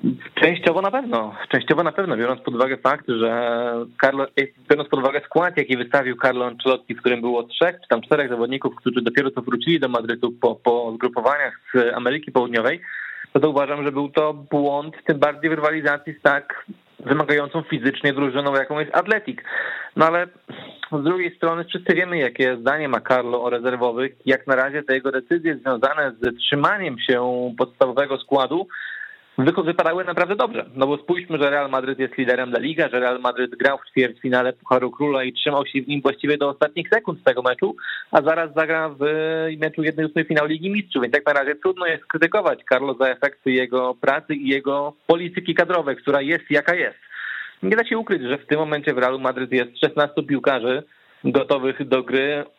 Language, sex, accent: Polish, male, native